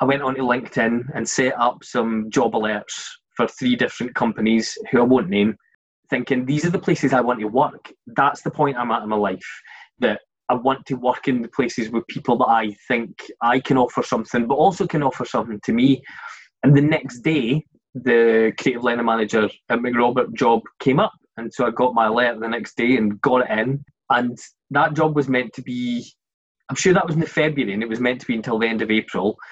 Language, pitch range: English, 115-145 Hz